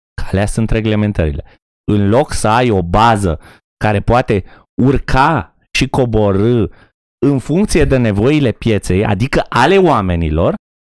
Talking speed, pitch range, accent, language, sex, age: 120 wpm, 95-155 Hz, native, Romanian, male, 30-49